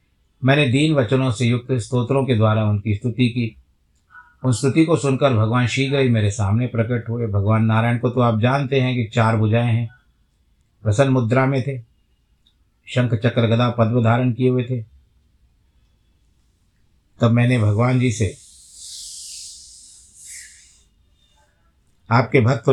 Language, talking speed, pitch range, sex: Hindi, 135 wpm, 105-130 Hz, male